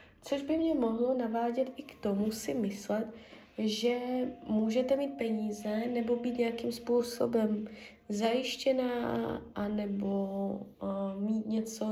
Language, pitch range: Czech, 205-240 Hz